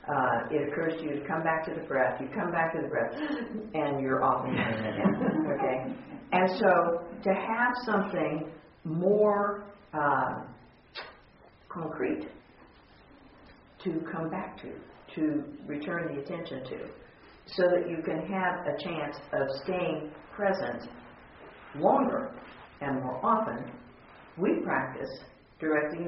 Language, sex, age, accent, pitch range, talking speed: English, female, 50-69, American, 140-185 Hz, 125 wpm